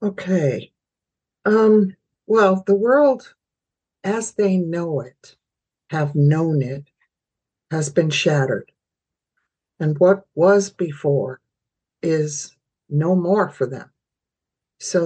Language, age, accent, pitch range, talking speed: English, 60-79, American, 145-180 Hz, 100 wpm